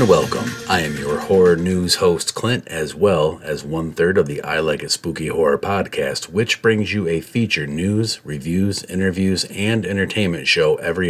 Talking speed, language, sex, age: 175 wpm, English, male, 40-59